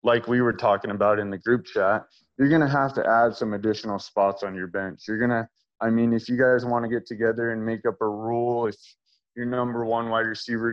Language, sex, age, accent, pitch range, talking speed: English, male, 20-39, American, 105-125 Hz, 245 wpm